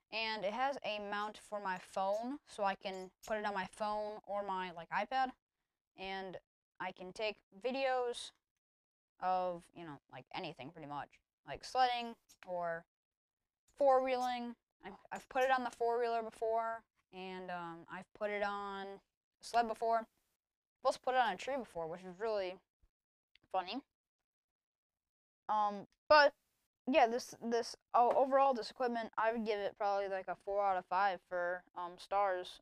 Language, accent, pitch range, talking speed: English, American, 185-235 Hz, 160 wpm